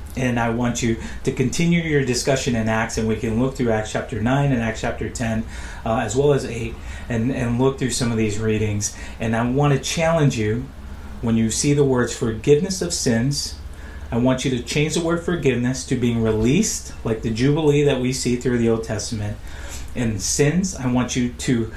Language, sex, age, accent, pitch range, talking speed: English, male, 30-49, American, 110-130 Hz, 210 wpm